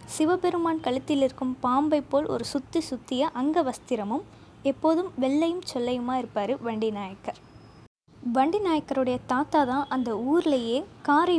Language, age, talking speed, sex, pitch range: Tamil, 20-39, 120 wpm, female, 240-300 Hz